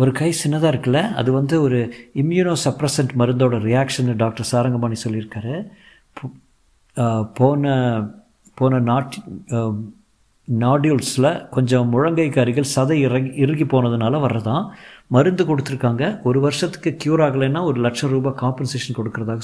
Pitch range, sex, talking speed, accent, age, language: 120-150 Hz, male, 110 wpm, native, 50-69, Tamil